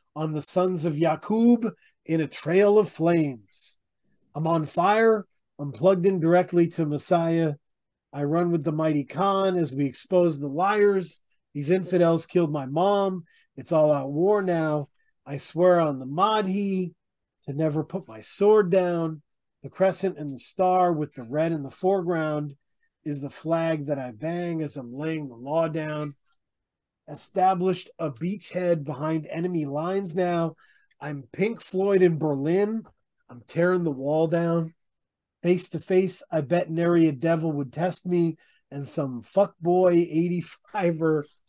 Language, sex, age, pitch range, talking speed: English, male, 40-59, 150-185 Hz, 155 wpm